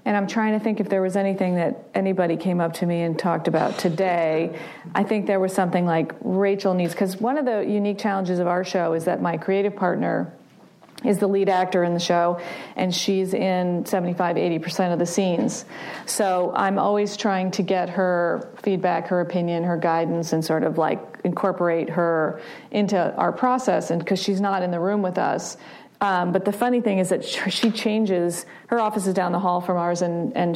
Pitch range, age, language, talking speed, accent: 175-205 Hz, 40-59, English, 205 wpm, American